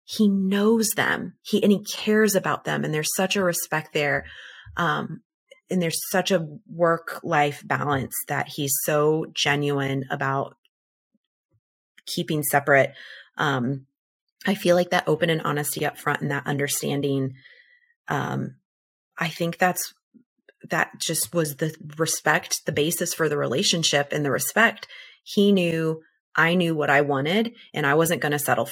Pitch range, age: 145-180 Hz, 30-49